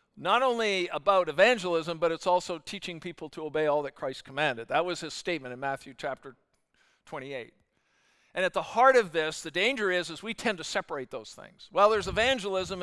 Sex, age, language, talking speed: male, 50-69, English, 195 wpm